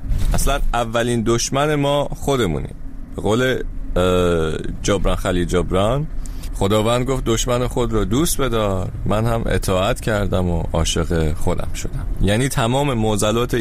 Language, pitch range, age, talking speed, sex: Persian, 90-120 Hz, 30-49, 125 wpm, male